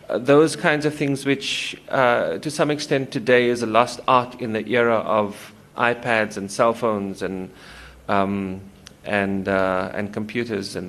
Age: 40-59